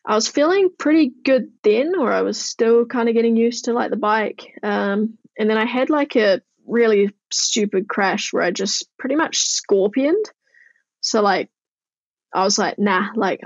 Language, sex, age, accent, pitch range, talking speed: English, female, 10-29, Australian, 200-245 Hz, 185 wpm